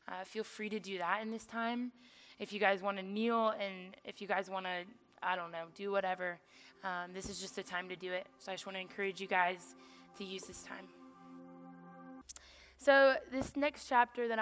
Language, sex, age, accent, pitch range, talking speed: English, female, 20-39, American, 190-225 Hz, 215 wpm